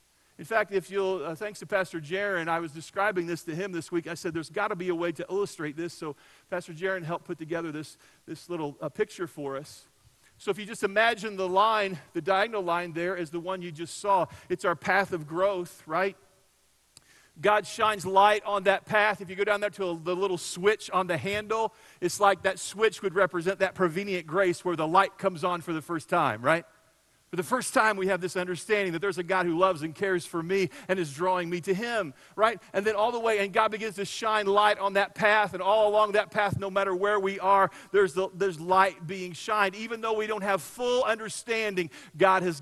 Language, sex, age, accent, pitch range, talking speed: English, male, 40-59, American, 170-205 Hz, 235 wpm